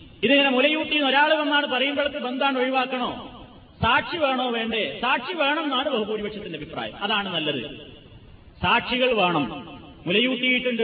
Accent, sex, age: native, male, 30-49